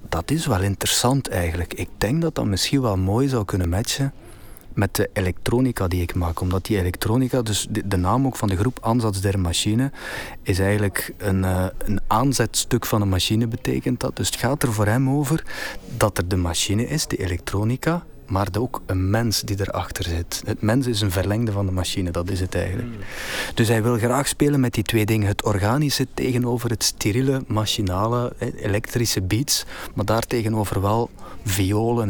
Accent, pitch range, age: Dutch, 100-120 Hz, 30-49